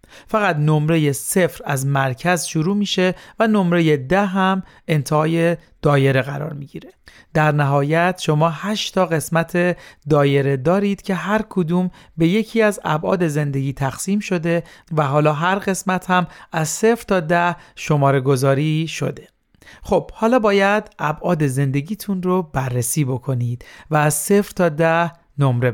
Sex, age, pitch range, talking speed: male, 40-59, 150-190 Hz, 135 wpm